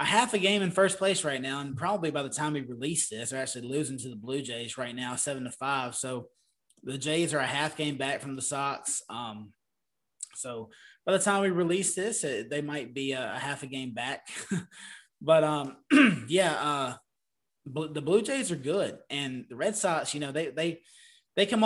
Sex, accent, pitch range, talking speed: male, American, 130-165 Hz, 215 wpm